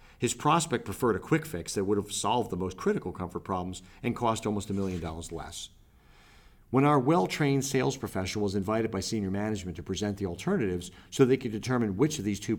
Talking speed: 210 wpm